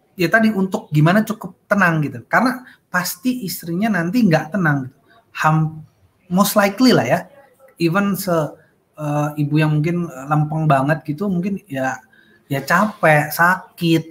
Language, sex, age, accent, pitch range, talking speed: Indonesian, male, 30-49, native, 145-195 Hz, 135 wpm